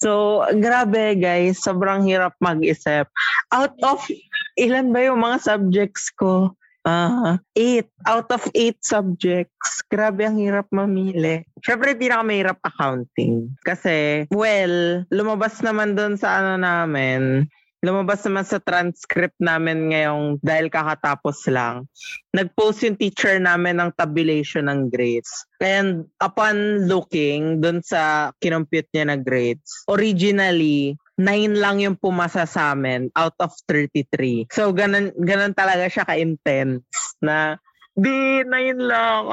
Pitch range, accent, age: 155-210 Hz, native, 20-39